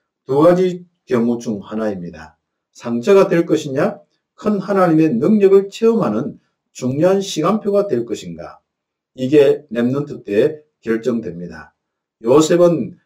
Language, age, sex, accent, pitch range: Korean, 50-69, male, native, 120-195 Hz